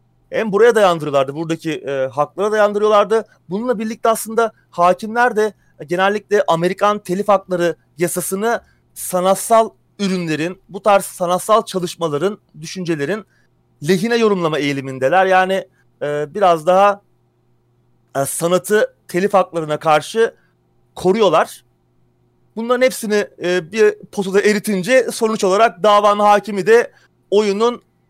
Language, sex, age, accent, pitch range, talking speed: Turkish, male, 30-49, native, 165-210 Hz, 105 wpm